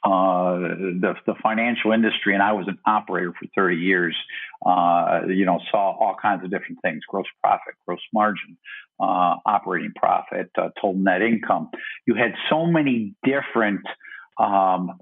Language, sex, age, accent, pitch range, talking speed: English, male, 50-69, American, 95-115 Hz, 155 wpm